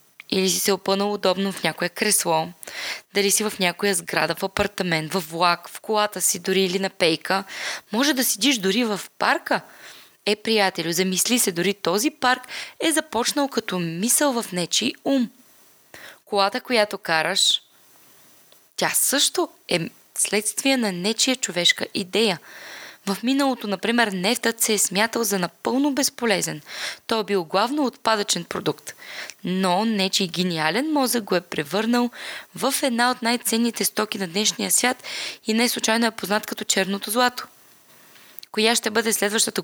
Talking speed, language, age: 150 wpm, Bulgarian, 20-39